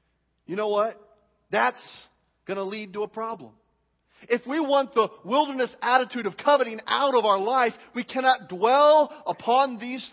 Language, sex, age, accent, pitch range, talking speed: English, male, 40-59, American, 205-290 Hz, 160 wpm